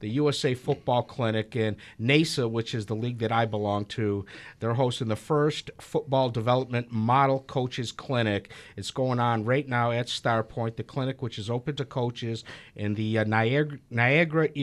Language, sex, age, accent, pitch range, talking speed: English, male, 50-69, American, 110-130 Hz, 170 wpm